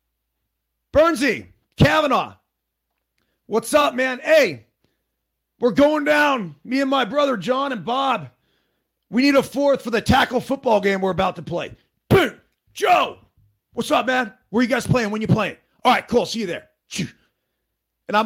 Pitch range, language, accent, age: 155-255 Hz, English, American, 30-49